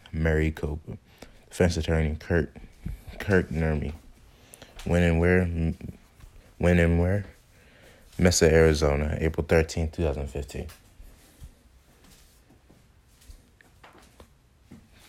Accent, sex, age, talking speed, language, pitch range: American, male, 20-39, 70 wpm, English, 75-85 Hz